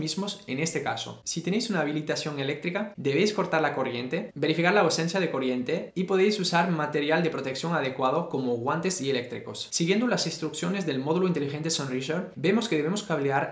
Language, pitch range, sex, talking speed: Spanish, 145-190 Hz, male, 180 wpm